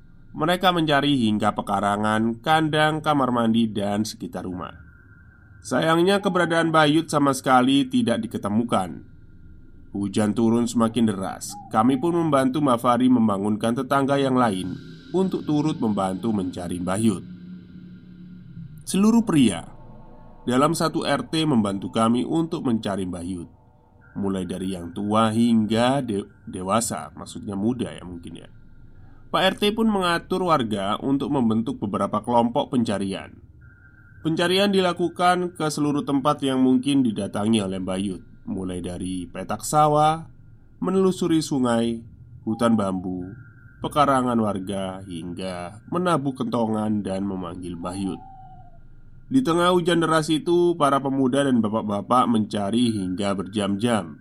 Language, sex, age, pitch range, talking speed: Indonesian, male, 20-39, 100-150 Hz, 115 wpm